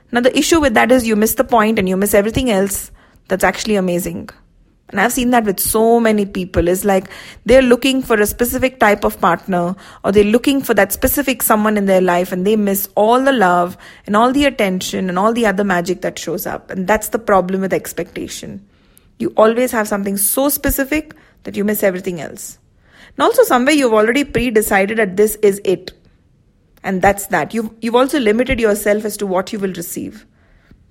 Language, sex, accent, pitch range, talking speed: English, female, Indian, 195-245 Hz, 205 wpm